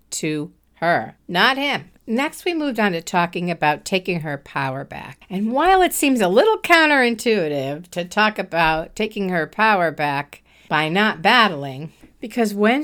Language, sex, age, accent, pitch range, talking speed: English, female, 50-69, American, 175-245 Hz, 160 wpm